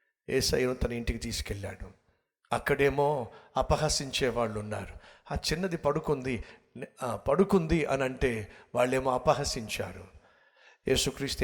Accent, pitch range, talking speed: native, 115-140 Hz, 95 wpm